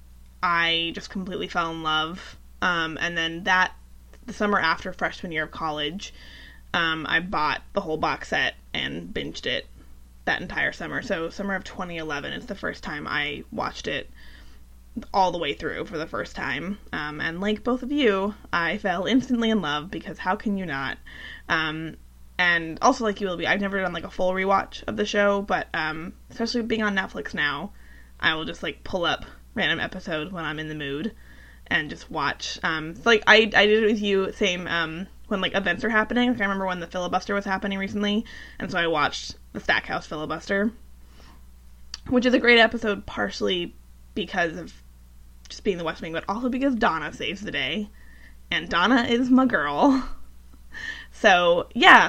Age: 20-39